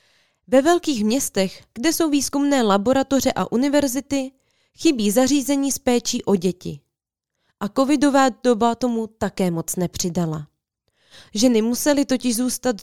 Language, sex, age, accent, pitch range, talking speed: Czech, female, 20-39, native, 185-265 Hz, 115 wpm